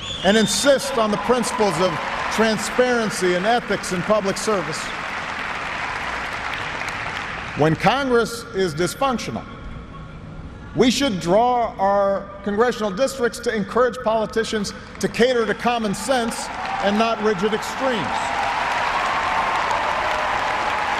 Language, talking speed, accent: English, 95 wpm, American